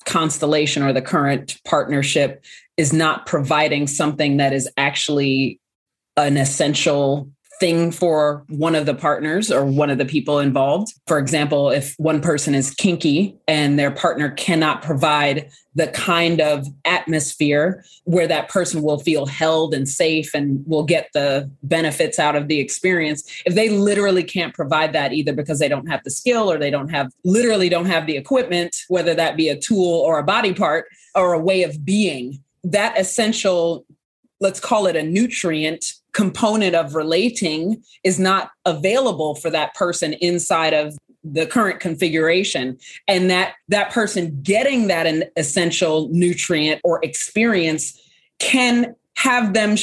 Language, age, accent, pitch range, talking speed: English, 30-49, American, 150-185 Hz, 155 wpm